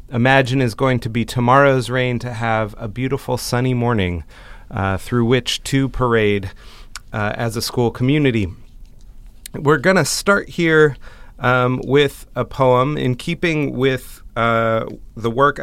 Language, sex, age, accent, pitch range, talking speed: English, male, 30-49, American, 105-125 Hz, 145 wpm